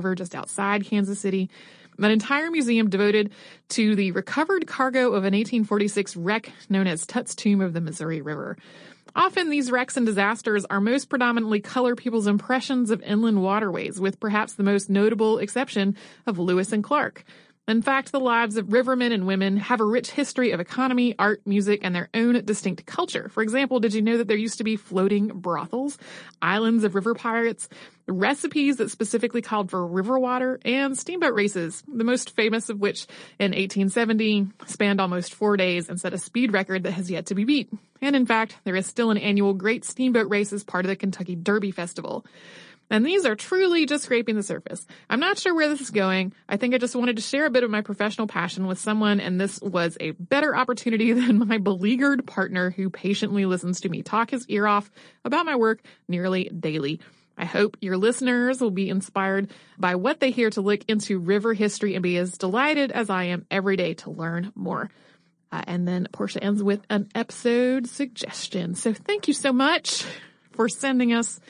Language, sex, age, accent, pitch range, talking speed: English, female, 30-49, American, 195-245 Hz, 195 wpm